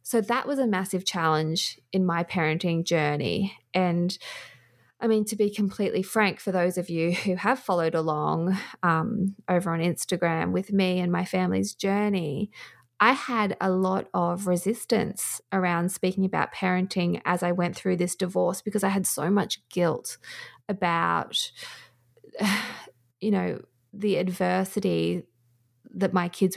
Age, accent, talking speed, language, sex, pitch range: 20-39, Australian, 145 wpm, English, female, 175-200 Hz